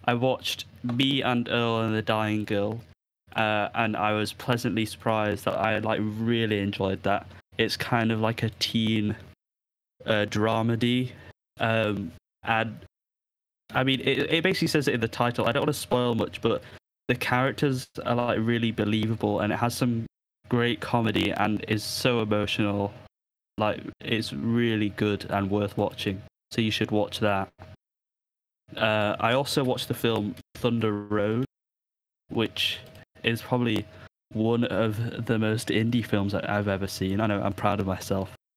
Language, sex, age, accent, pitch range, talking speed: English, male, 10-29, British, 105-120 Hz, 160 wpm